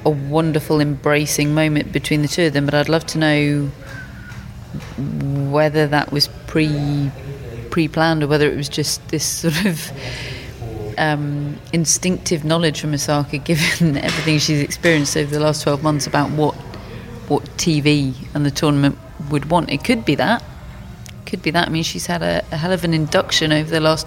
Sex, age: female, 30-49